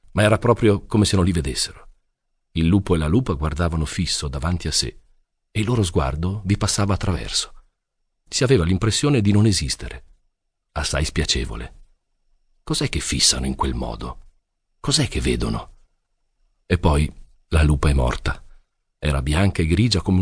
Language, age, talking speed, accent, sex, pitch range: Italian, 40-59, 155 wpm, native, male, 75-100 Hz